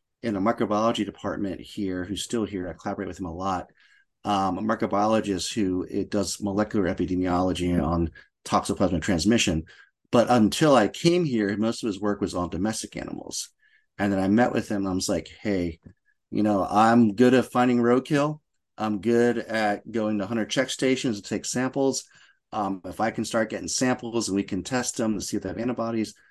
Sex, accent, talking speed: male, American, 190 wpm